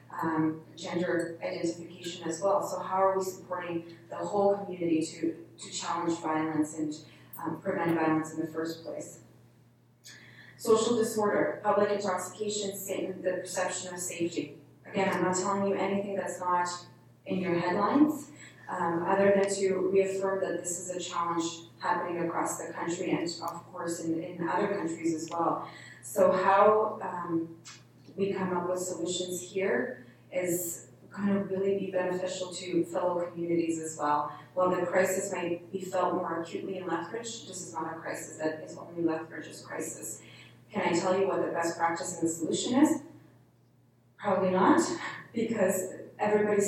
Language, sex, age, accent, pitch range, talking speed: English, female, 20-39, American, 165-190 Hz, 160 wpm